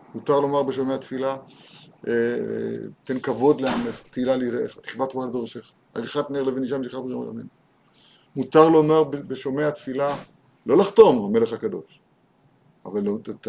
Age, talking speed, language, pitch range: 50-69, 135 wpm, Hebrew, 135-190 Hz